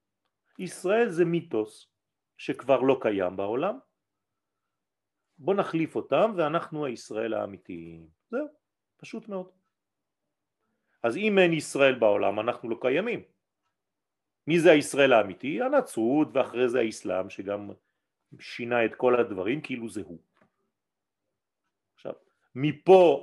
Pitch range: 130-200 Hz